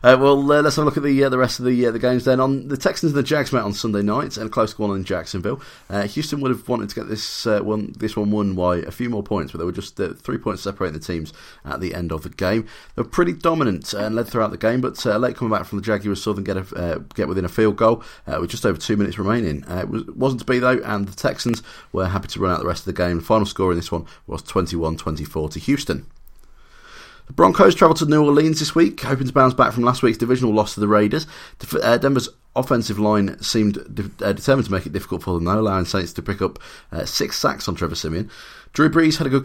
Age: 30-49